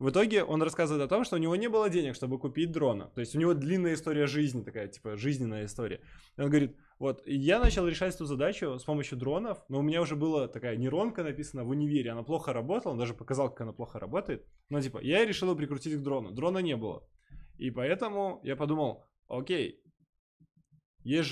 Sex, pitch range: male, 130-165 Hz